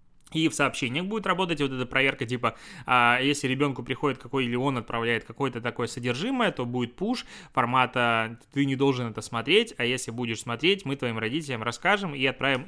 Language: Russian